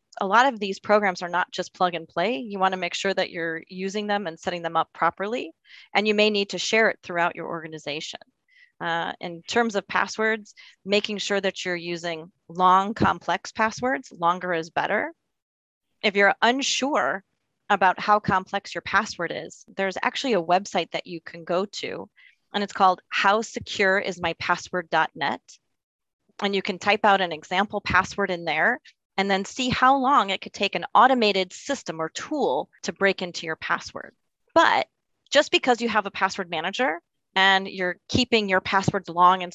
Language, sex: English, female